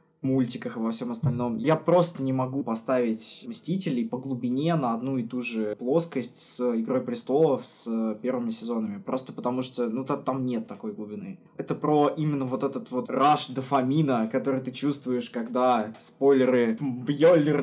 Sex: male